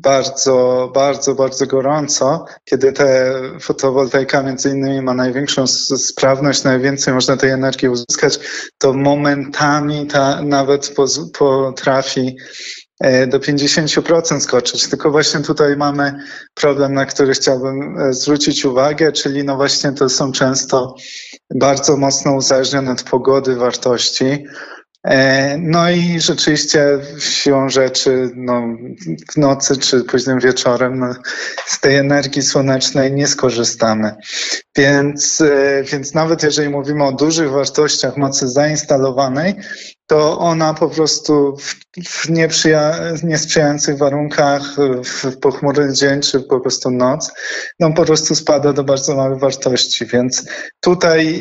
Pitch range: 135-150 Hz